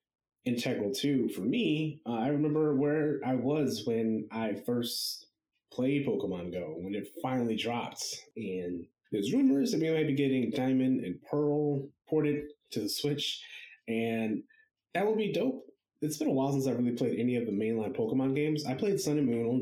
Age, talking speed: 30-49, 185 wpm